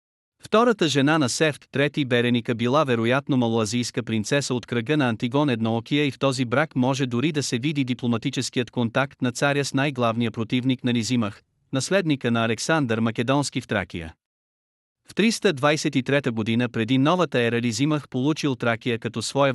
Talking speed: 150 wpm